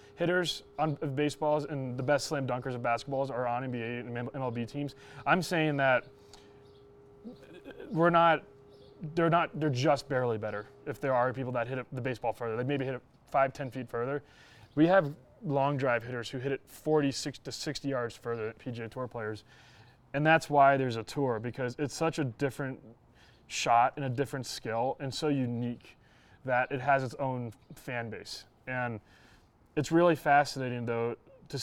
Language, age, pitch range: English, 20-39, 120-145 Hz